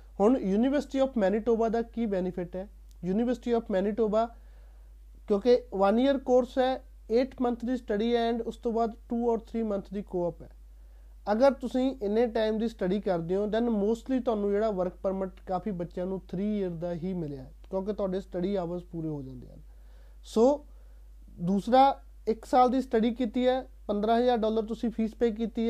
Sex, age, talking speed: male, 30-49, 175 wpm